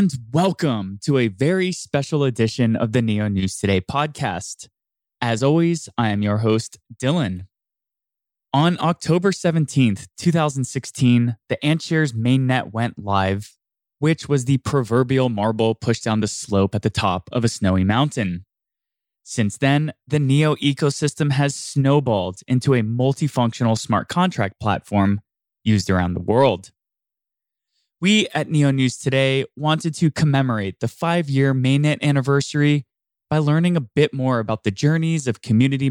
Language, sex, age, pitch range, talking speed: English, male, 20-39, 110-150 Hz, 140 wpm